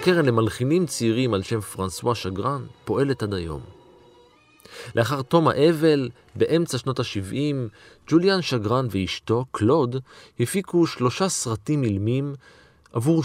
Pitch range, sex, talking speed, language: 100-140 Hz, male, 115 wpm, Hebrew